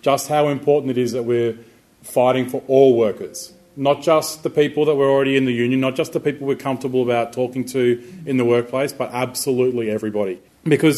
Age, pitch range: 30-49, 115-135 Hz